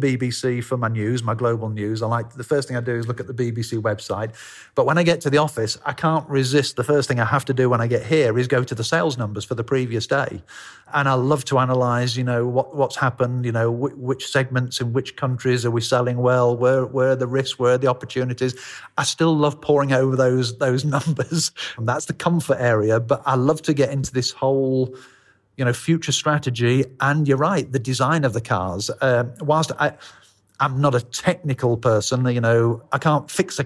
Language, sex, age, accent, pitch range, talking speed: English, male, 40-59, British, 120-135 Hz, 225 wpm